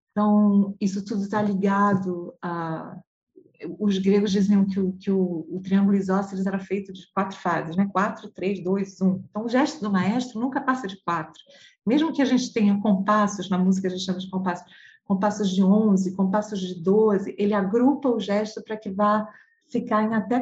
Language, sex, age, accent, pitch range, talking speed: Portuguese, female, 40-59, Brazilian, 195-235 Hz, 190 wpm